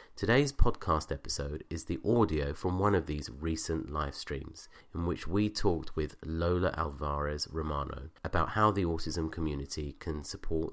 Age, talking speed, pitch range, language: 30-49, 155 wpm, 75-95 Hz, English